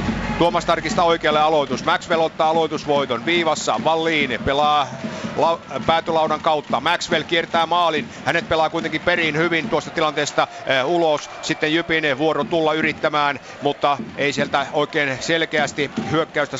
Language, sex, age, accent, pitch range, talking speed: Finnish, male, 50-69, native, 140-155 Hz, 130 wpm